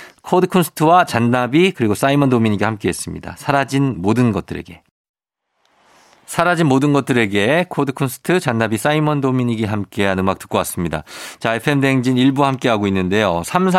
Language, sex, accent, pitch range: Korean, male, native, 105-145 Hz